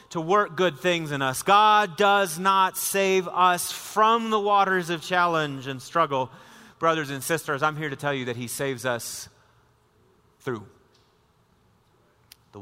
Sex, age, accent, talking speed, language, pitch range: male, 30-49, American, 150 wpm, English, 155-215 Hz